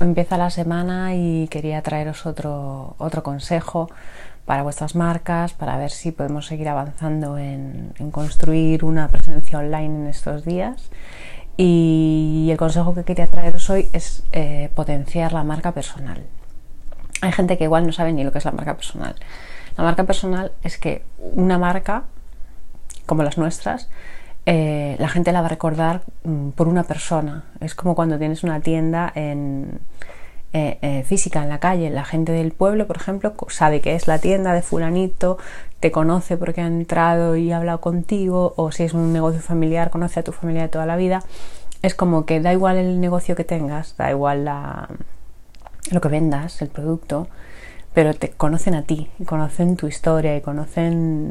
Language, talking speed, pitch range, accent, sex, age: Spanish, 175 wpm, 150-175 Hz, Spanish, female, 30-49